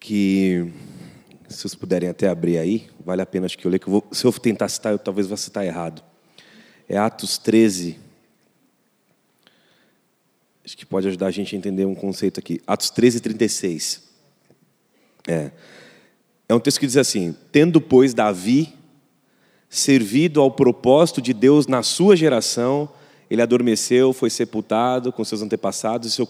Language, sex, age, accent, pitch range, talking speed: Portuguese, male, 30-49, Brazilian, 100-130 Hz, 155 wpm